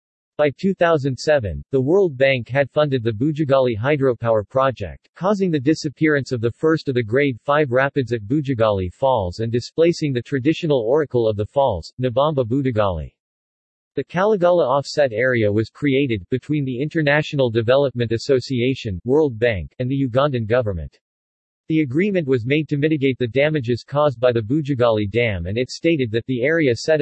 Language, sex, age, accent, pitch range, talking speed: English, male, 50-69, American, 120-150 Hz, 160 wpm